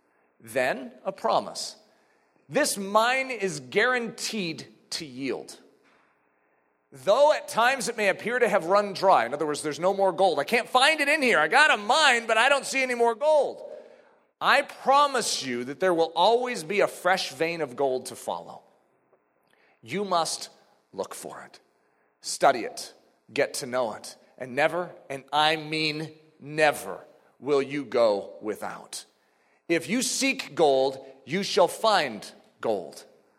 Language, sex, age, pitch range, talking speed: English, male, 40-59, 155-265 Hz, 155 wpm